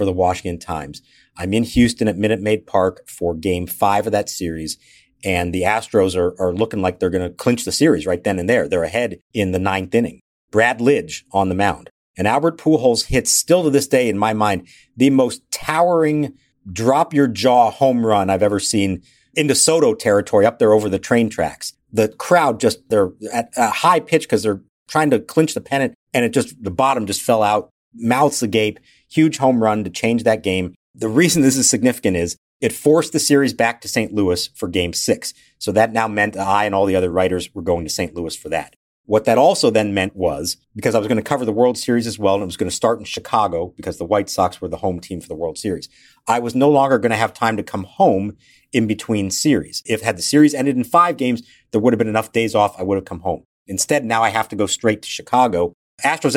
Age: 50-69